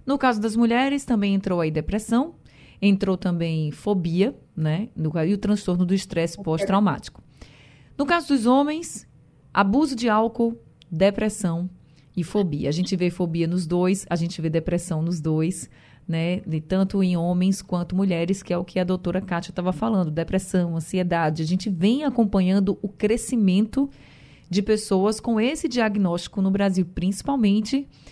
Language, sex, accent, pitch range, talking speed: Portuguese, female, Brazilian, 170-220 Hz, 155 wpm